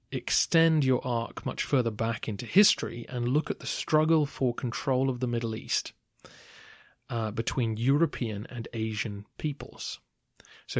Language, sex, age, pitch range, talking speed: English, male, 30-49, 105-125 Hz, 145 wpm